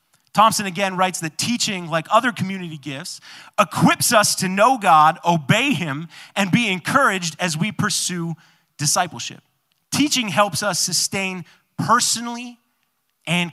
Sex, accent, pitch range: male, American, 160-215 Hz